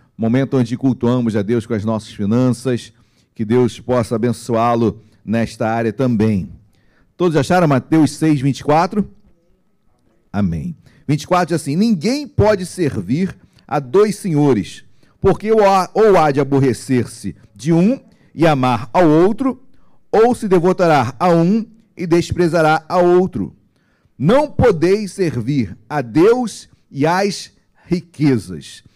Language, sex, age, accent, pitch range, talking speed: Portuguese, male, 40-59, Brazilian, 130-180 Hz, 120 wpm